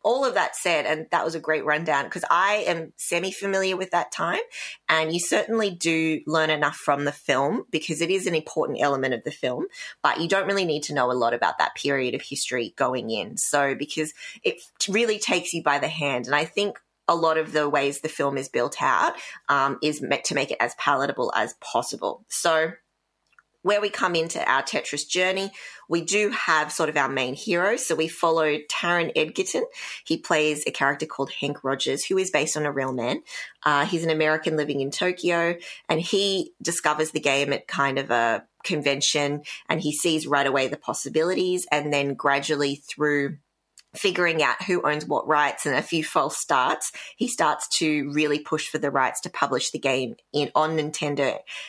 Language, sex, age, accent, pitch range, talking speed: English, female, 20-39, Australian, 145-175 Hz, 200 wpm